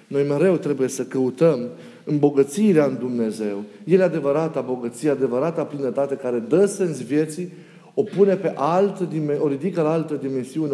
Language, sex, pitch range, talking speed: Romanian, male, 135-180 Hz, 145 wpm